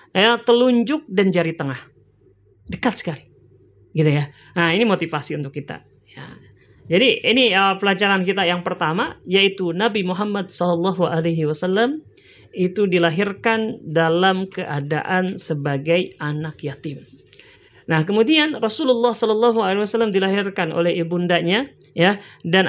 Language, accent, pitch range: Indonesian, native, 165-220 Hz